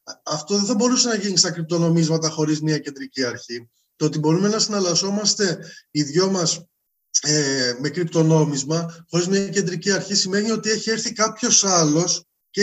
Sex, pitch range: male, 170-215 Hz